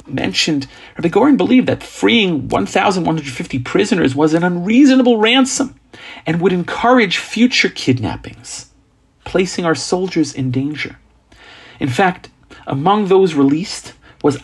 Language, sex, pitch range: English, male, 125-185 Hz